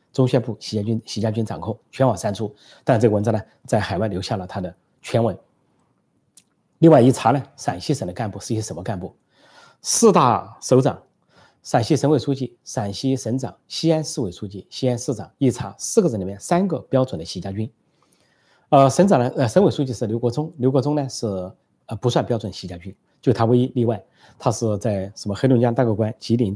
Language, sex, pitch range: Chinese, male, 105-135 Hz